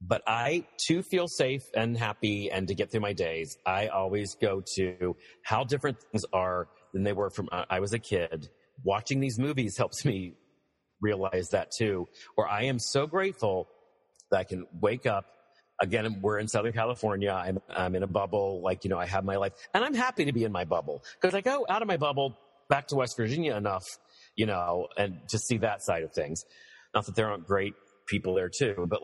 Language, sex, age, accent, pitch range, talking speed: English, male, 40-59, American, 95-125 Hz, 215 wpm